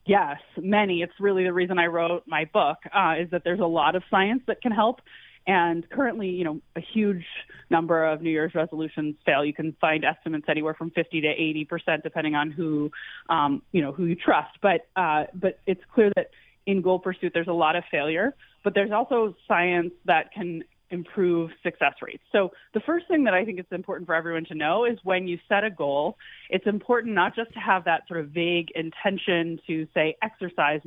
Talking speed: 210 wpm